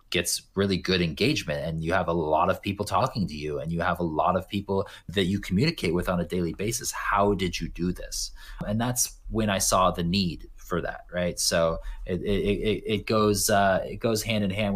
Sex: male